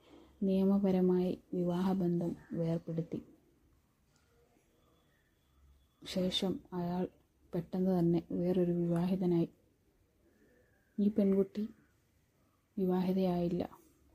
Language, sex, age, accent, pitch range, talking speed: Malayalam, female, 20-39, native, 180-200 Hz, 50 wpm